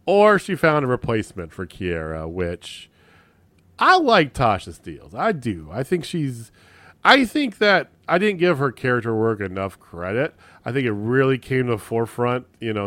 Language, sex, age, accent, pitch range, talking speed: English, male, 40-59, American, 95-140 Hz, 175 wpm